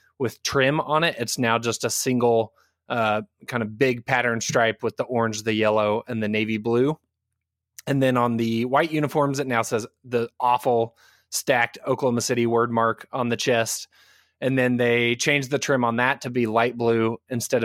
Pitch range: 115-140 Hz